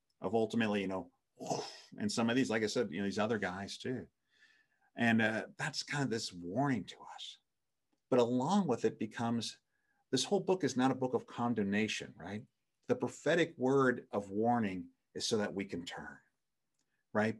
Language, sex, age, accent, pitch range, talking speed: English, male, 50-69, American, 110-140 Hz, 185 wpm